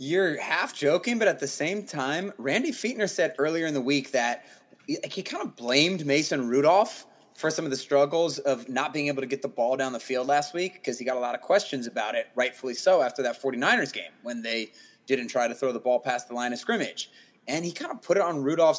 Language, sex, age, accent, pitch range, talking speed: English, male, 20-39, American, 135-175 Hz, 245 wpm